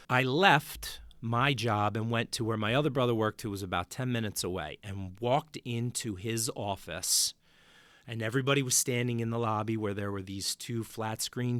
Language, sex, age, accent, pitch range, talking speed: English, male, 40-59, American, 100-130 Hz, 190 wpm